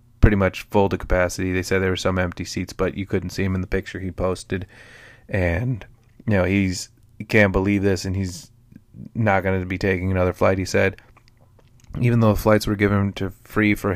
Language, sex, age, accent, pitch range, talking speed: English, male, 20-39, American, 90-110 Hz, 210 wpm